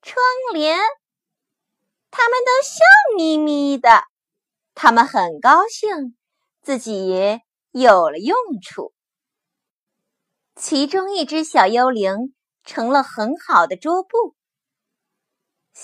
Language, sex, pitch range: Chinese, female, 230-370 Hz